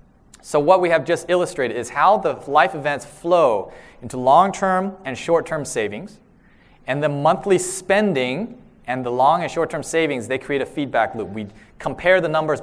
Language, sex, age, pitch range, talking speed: English, male, 30-49, 135-170 Hz, 170 wpm